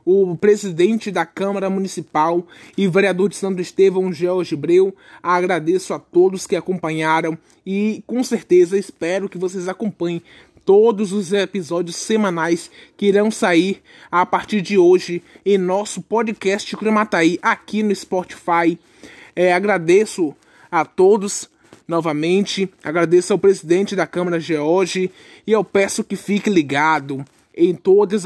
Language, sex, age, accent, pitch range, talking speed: Portuguese, male, 20-39, Brazilian, 180-210 Hz, 130 wpm